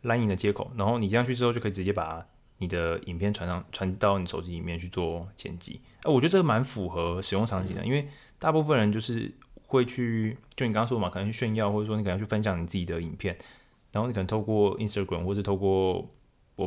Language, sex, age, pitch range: Chinese, male, 20-39, 95-115 Hz